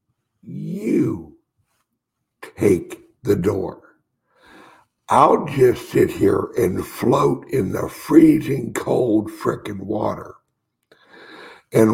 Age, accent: 60-79, American